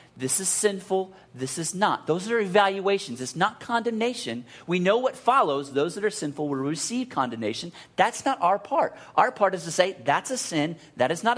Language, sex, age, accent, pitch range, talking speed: English, male, 40-59, American, 140-190 Hz, 200 wpm